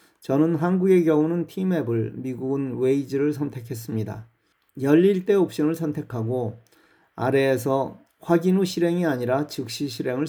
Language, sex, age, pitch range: Korean, male, 40-59, 120-160 Hz